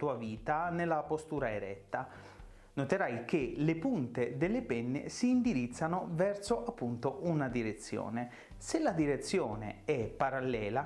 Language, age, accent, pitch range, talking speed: Italian, 30-49, native, 120-185 Hz, 115 wpm